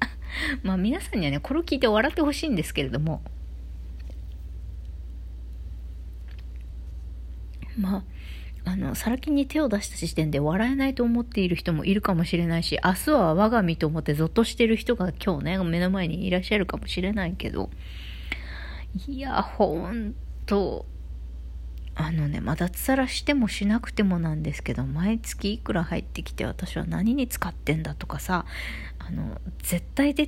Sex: female